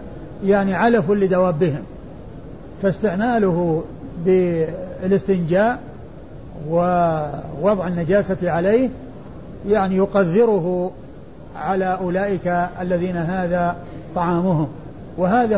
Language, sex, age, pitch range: Arabic, male, 50-69, 175-200 Hz